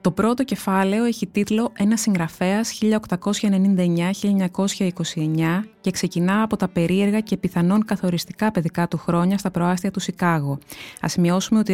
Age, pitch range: 20-39, 165-205 Hz